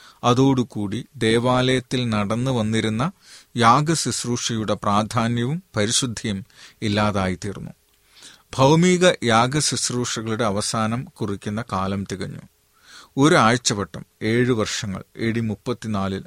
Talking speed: 60 wpm